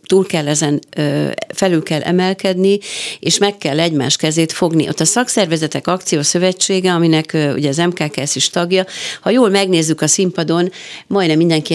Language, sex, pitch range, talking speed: Hungarian, female, 155-190 Hz, 160 wpm